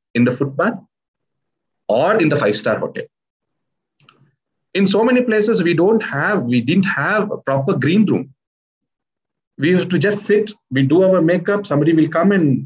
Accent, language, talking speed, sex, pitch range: Indian, French, 165 wpm, male, 140-215 Hz